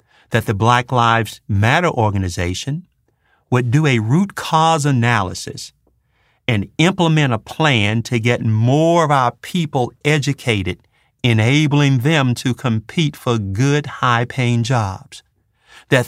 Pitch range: 115-155 Hz